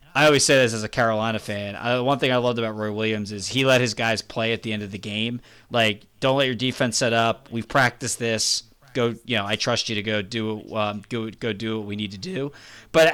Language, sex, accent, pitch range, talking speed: English, male, American, 110-140 Hz, 260 wpm